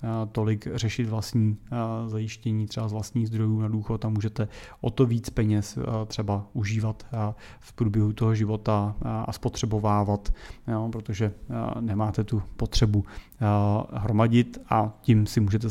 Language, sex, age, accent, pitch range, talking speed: Czech, male, 30-49, native, 110-120 Hz, 125 wpm